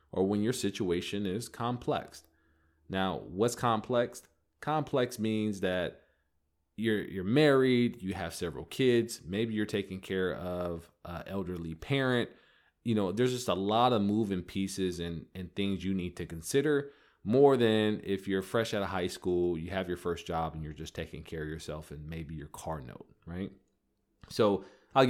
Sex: male